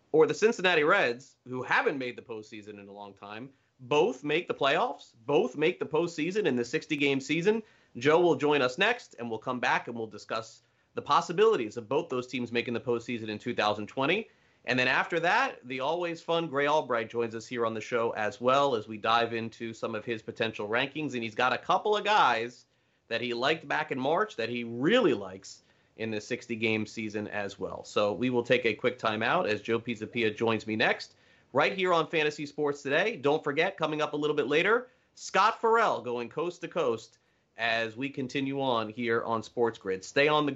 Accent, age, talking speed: American, 30-49, 210 wpm